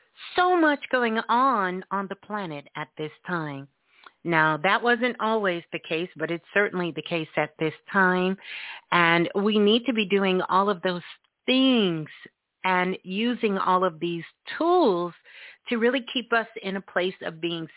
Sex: female